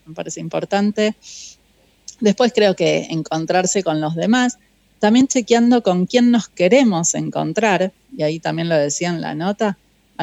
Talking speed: 155 wpm